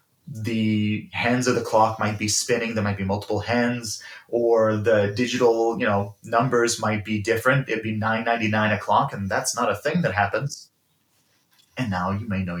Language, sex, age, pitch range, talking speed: English, male, 30-49, 100-120 Hz, 180 wpm